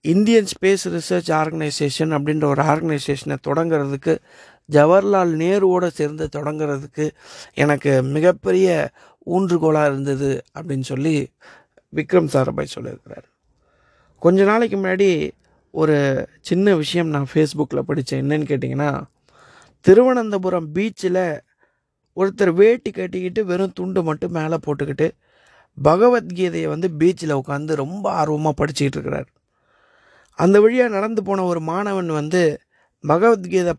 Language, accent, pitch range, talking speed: Tamil, native, 150-185 Hz, 105 wpm